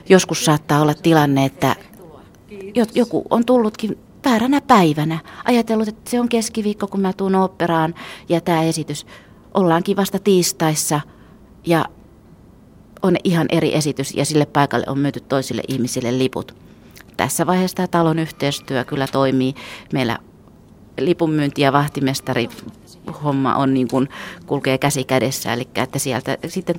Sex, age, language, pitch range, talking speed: female, 30-49, Finnish, 135-175 Hz, 130 wpm